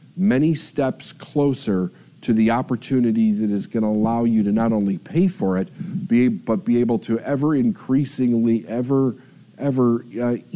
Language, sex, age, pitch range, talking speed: English, male, 50-69, 115-170 Hz, 160 wpm